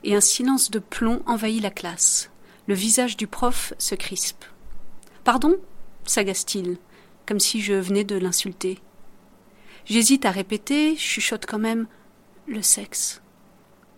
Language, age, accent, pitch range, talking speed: French, 40-59, French, 200-245 Hz, 130 wpm